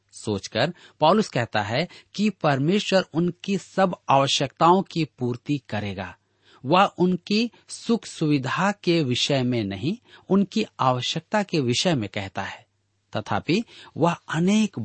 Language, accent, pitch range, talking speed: Hindi, native, 110-165 Hz, 120 wpm